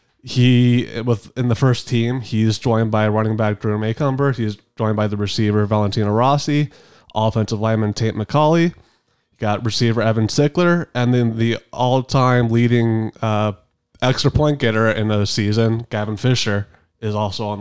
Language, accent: English, American